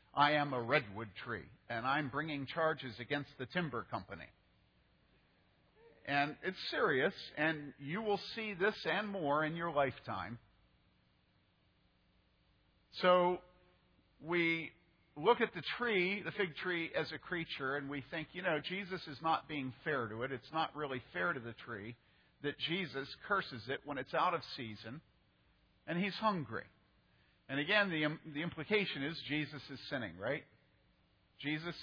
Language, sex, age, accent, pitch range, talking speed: English, male, 50-69, American, 110-160 Hz, 150 wpm